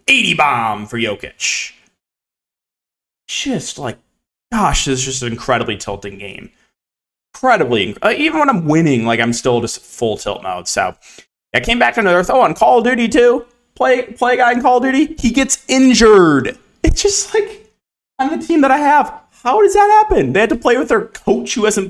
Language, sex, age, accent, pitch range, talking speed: English, male, 30-49, American, 120-195 Hz, 195 wpm